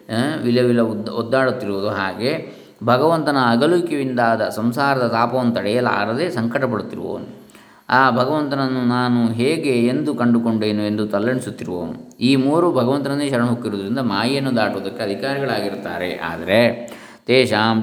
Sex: male